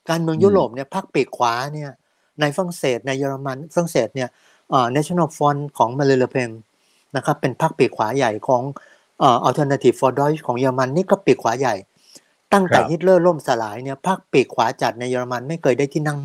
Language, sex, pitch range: Thai, male, 125-160 Hz